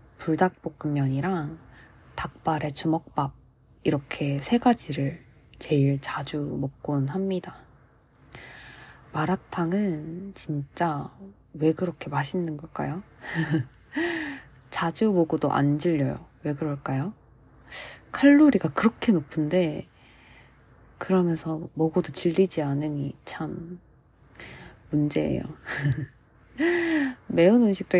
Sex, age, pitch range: female, 20-39, 145-190 Hz